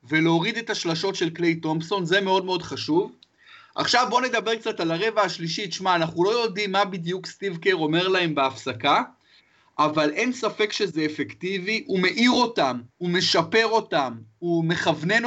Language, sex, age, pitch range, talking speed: Hebrew, male, 30-49, 165-210 Hz, 160 wpm